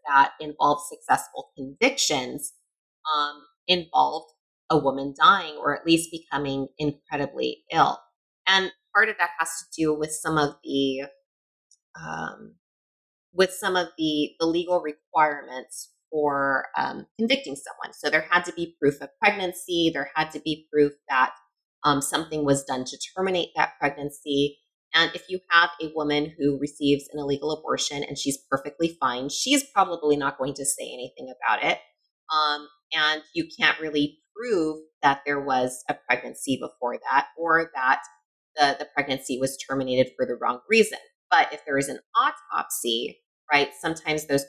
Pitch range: 140-175 Hz